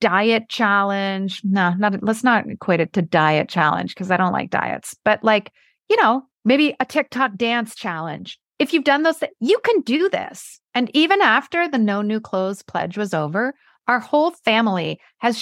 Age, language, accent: 30-49, English, American